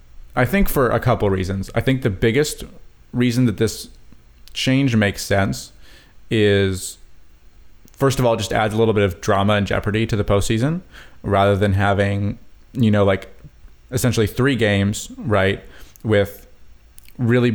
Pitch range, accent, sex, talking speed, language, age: 100-120 Hz, American, male, 150 wpm, English, 30-49